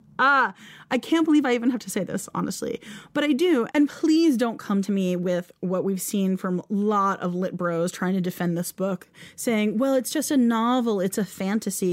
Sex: female